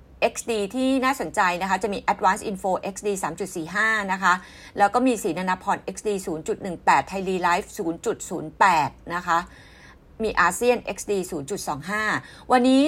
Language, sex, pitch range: Thai, female, 185-235 Hz